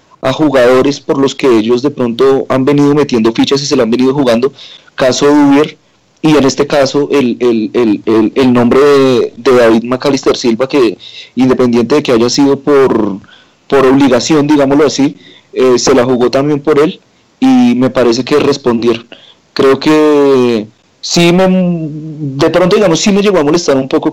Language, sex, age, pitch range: Spanish, male, 30-49, 125-145 Hz